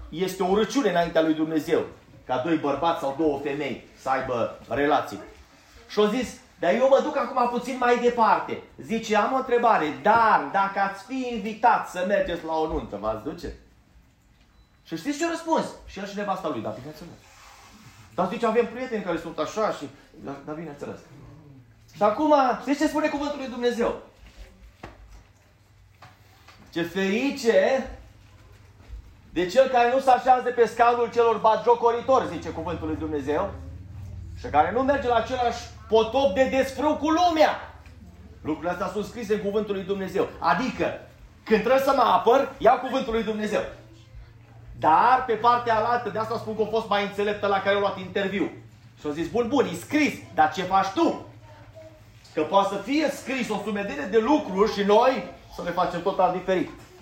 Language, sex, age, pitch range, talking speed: Romanian, male, 30-49, 150-240 Hz, 165 wpm